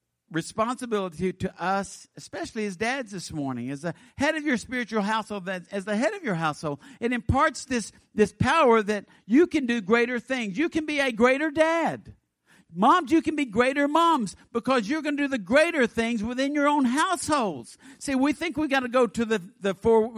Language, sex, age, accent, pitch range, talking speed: English, male, 50-69, American, 225-295 Hz, 200 wpm